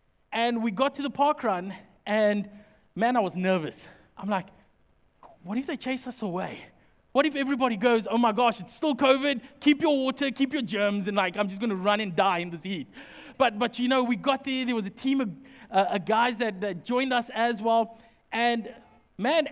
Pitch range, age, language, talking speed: 215-270 Hz, 20-39, English, 210 wpm